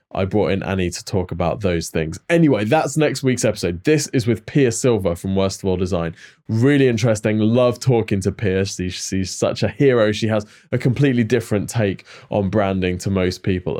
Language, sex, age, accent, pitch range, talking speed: English, male, 20-39, British, 95-120 Hz, 200 wpm